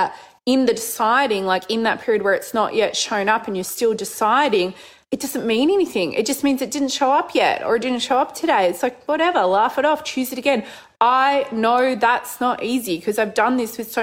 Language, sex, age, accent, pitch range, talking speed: English, female, 20-39, Australian, 200-235 Hz, 235 wpm